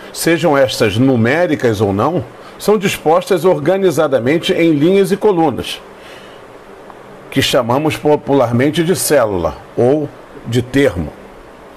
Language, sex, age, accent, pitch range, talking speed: Portuguese, male, 50-69, Brazilian, 125-185 Hz, 100 wpm